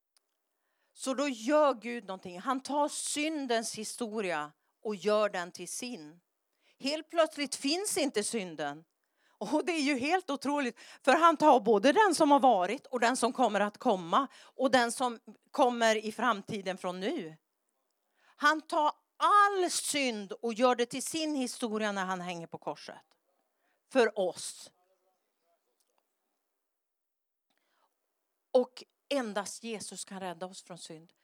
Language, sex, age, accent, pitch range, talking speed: English, female, 50-69, Swedish, 200-280 Hz, 140 wpm